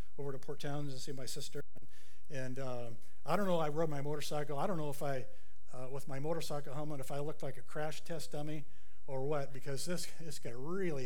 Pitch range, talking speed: 125-150 Hz, 240 wpm